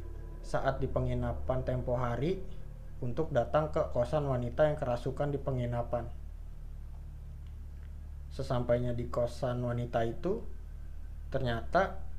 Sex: male